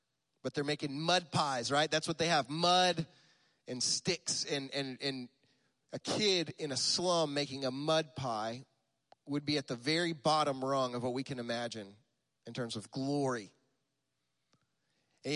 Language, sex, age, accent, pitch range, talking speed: English, male, 30-49, American, 140-185 Hz, 165 wpm